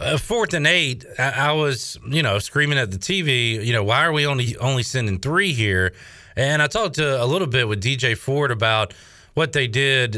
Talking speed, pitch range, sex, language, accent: 220 wpm, 105-135 Hz, male, English, American